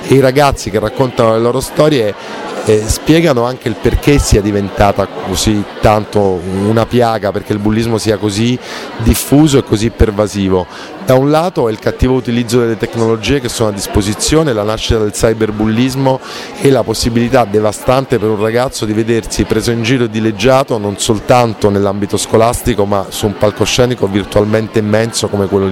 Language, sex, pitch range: Italian, male, 105-120 Hz